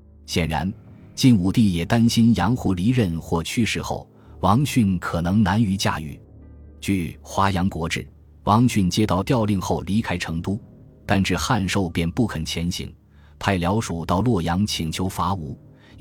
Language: Chinese